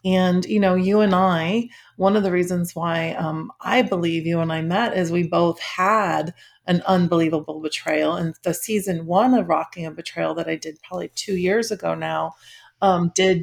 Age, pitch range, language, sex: 30-49, 170-200 Hz, English, female